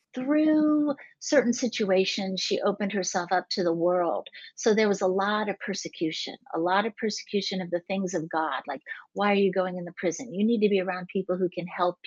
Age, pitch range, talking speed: 50-69, 175-210 Hz, 215 wpm